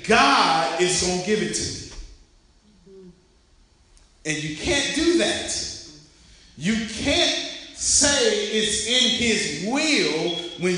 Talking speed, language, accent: 115 wpm, English, American